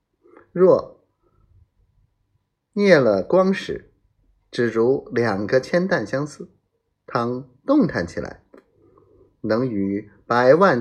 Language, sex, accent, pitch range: Chinese, male, native, 105-170 Hz